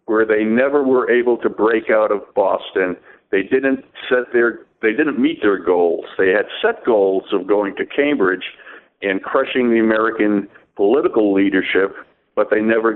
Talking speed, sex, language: 165 wpm, male, English